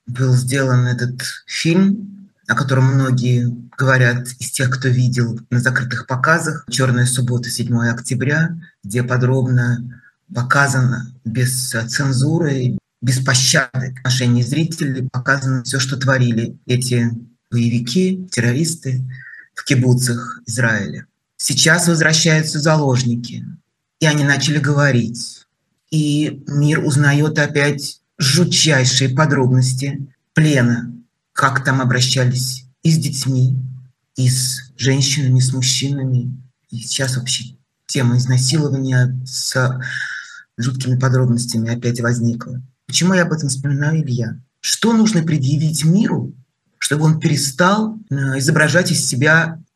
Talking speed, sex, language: 110 wpm, male, Russian